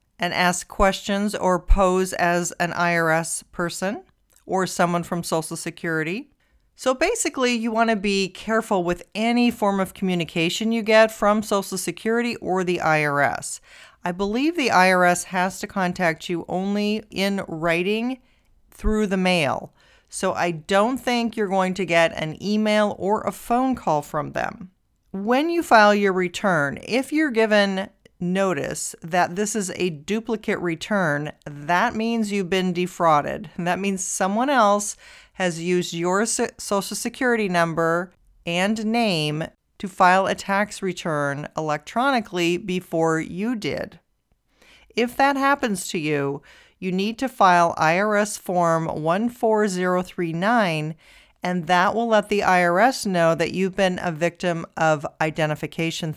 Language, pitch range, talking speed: English, 175-215 Hz, 140 wpm